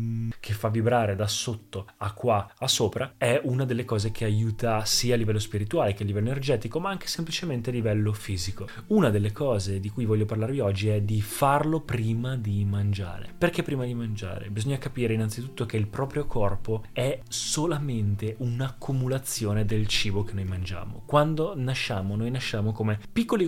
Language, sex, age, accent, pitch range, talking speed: Italian, male, 20-39, native, 105-135 Hz, 170 wpm